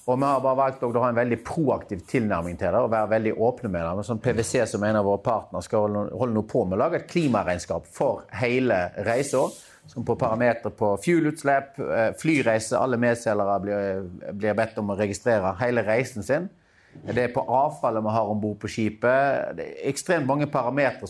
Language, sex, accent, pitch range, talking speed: English, male, Swedish, 105-145 Hz, 190 wpm